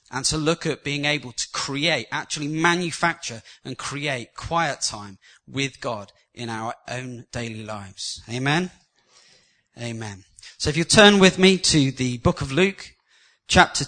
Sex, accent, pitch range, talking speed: male, British, 125-165 Hz, 150 wpm